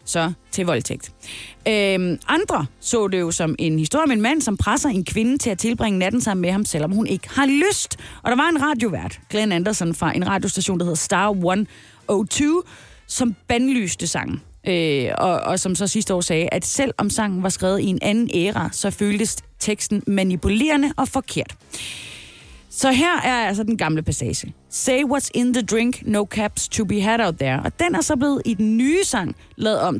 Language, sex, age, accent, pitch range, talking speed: Danish, female, 30-49, native, 180-255 Hz, 195 wpm